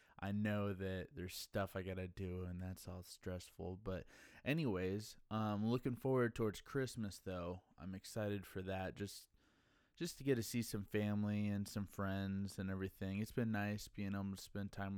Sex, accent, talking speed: male, American, 185 wpm